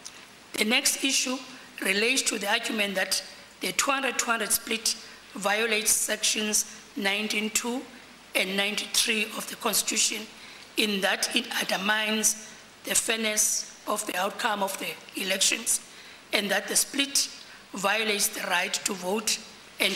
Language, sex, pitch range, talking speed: English, female, 210-245 Hz, 125 wpm